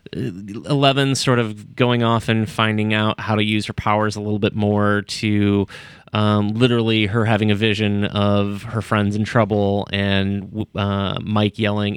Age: 30-49